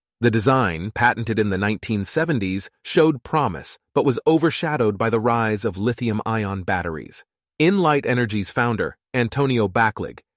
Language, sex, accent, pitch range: English, male, American, 100-125 Hz